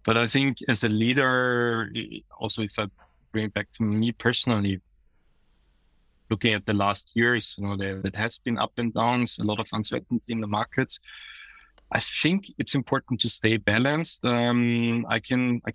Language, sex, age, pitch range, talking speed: English, male, 20-39, 110-125 Hz, 185 wpm